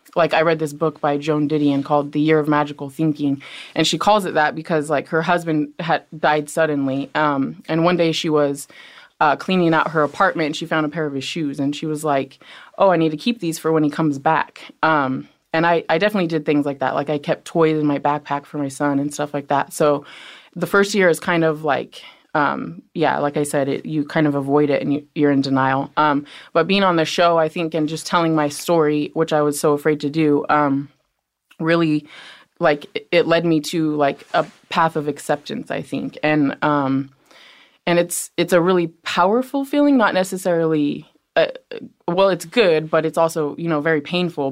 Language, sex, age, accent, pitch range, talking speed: English, female, 20-39, American, 145-165 Hz, 220 wpm